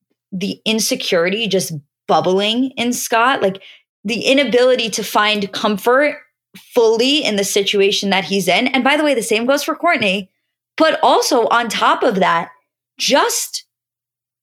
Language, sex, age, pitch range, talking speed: English, female, 20-39, 185-225 Hz, 145 wpm